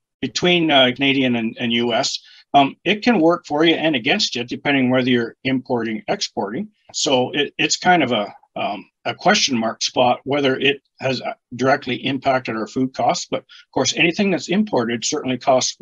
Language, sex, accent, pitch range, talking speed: English, male, American, 120-140 Hz, 175 wpm